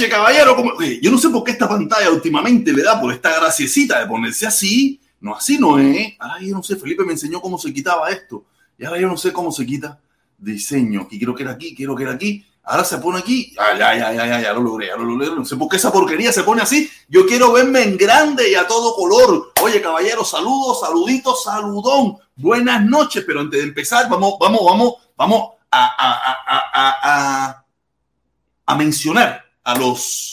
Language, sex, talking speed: Spanish, male, 215 wpm